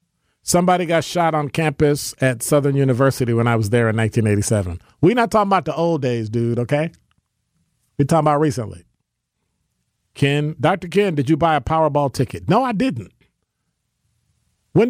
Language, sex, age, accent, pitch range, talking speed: English, male, 40-59, American, 125-180 Hz, 160 wpm